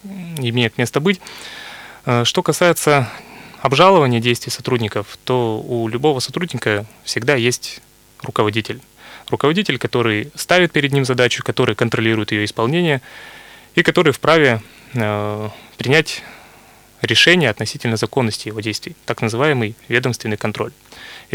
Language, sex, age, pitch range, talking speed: Russian, male, 20-39, 110-130 Hz, 105 wpm